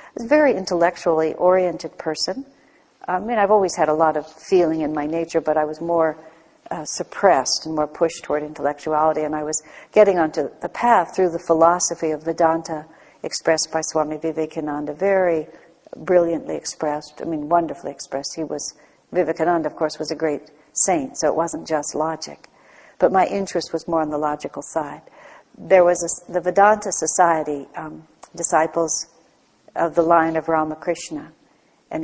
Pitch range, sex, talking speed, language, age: 155-180 Hz, female, 165 wpm, English, 60-79